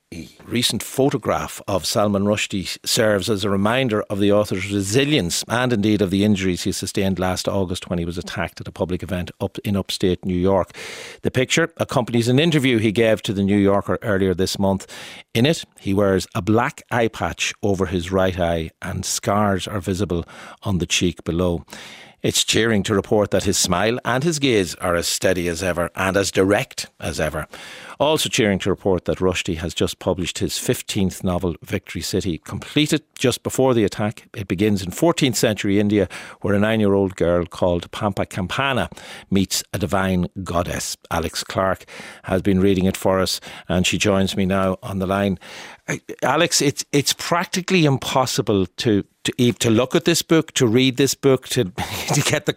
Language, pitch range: English, 95-120 Hz